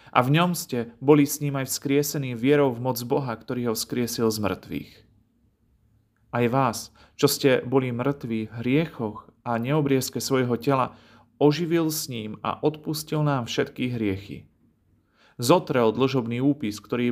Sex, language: male, Slovak